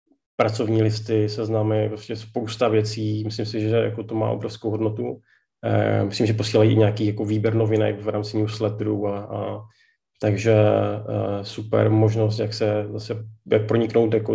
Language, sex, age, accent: Czech, male, 30-49, native